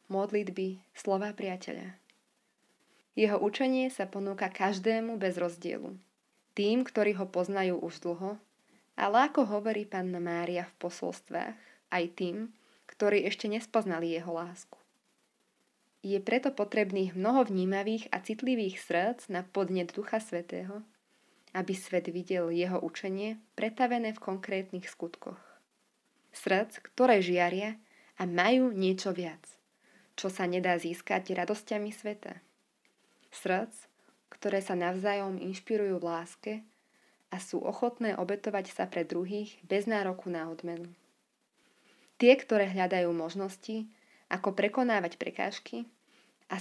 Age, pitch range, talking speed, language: 20-39, 180-220 Hz, 115 wpm, Slovak